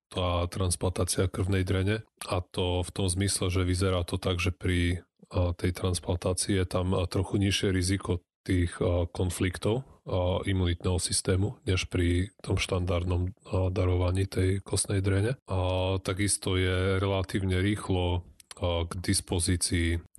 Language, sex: Slovak, male